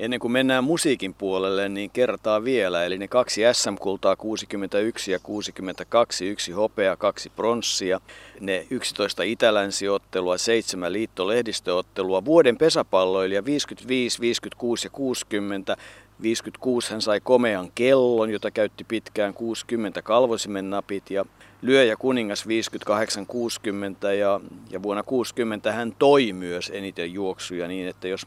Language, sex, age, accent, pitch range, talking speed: Finnish, male, 50-69, native, 100-120 Hz, 125 wpm